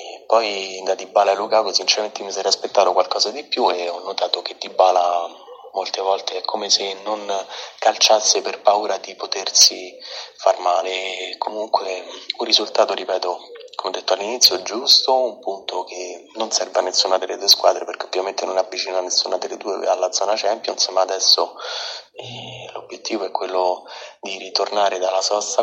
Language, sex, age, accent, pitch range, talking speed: Italian, male, 30-49, native, 95-105 Hz, 160 wpm